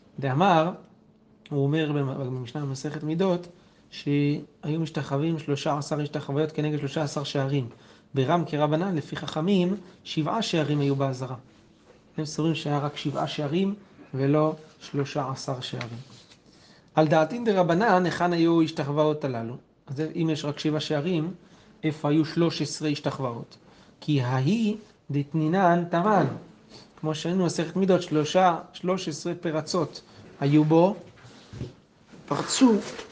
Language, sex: Hebrew, male